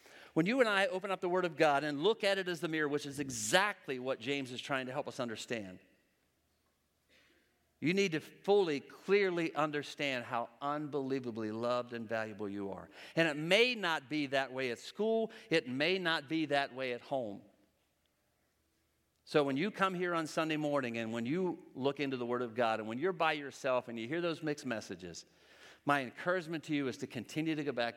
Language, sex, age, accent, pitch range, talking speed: English, male, 50-69, American, 115-160 Hz, 205 wpm